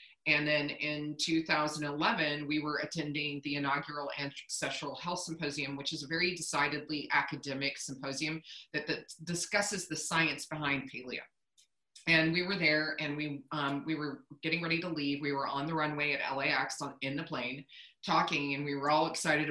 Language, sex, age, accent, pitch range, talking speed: English, female, 30-49, American, 150-180 Hz, 175 wpm